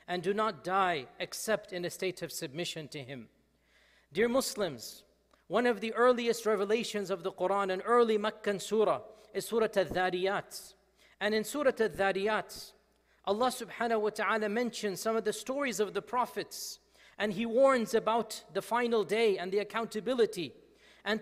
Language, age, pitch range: Bengali, 40-59, 205-250 Hz